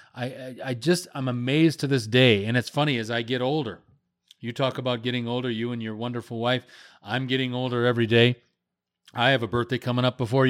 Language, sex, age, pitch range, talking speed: English, male, 40-59, 120-160 Hz, 215 wpm